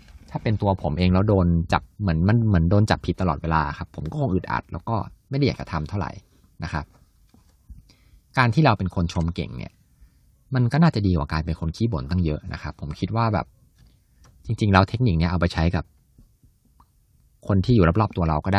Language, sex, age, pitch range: Thai, male, 20-39, 80-110 Hz